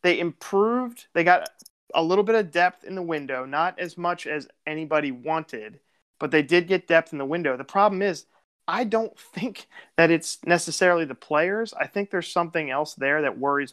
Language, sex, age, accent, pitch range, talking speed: English, male, 30-49, American, 140-175 Hz, 195 wpm